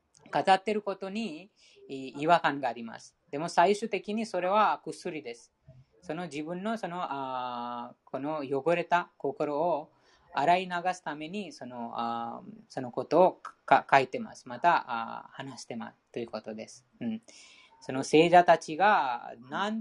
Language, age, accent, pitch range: Japanese, 20-39, Indian, 130-180 Hz